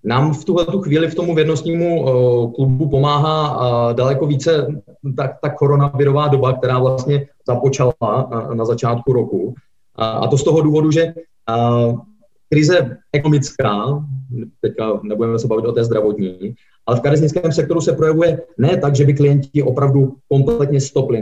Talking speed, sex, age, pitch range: 140 wpm, male, 30-49, 125-150 Hz